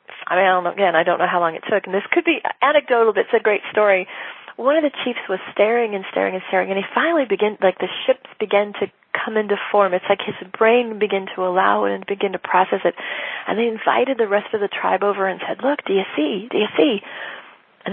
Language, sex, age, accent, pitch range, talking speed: English, female, 40-59, American, 190-240 Hz, 245 wpm